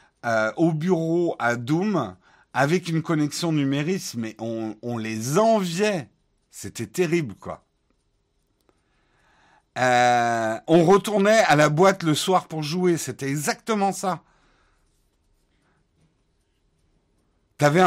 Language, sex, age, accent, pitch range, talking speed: French, male, 50-69, French, 115-175 Hz, 105 wpm